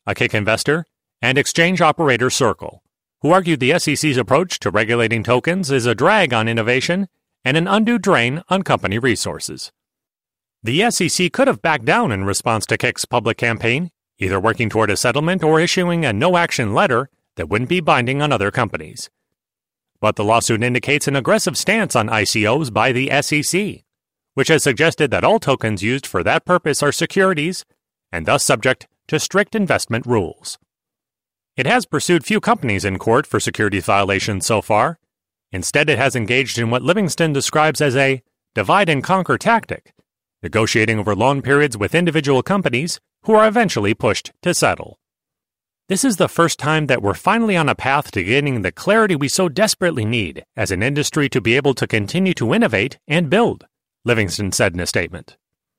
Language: English